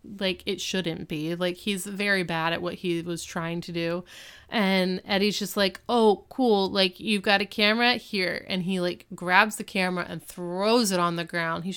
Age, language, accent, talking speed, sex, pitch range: 20-39, English, American, 205 wpm, female, 175-200 Hz